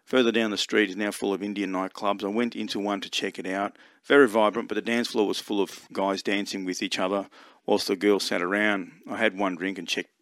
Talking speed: 255 wpm